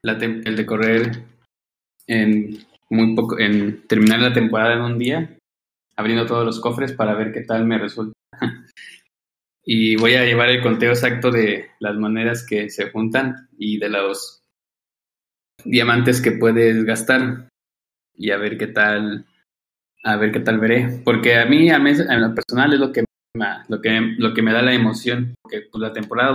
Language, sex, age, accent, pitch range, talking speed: Spanish, male, 20-39, Mexican, 110-125 Hz, 180 wpm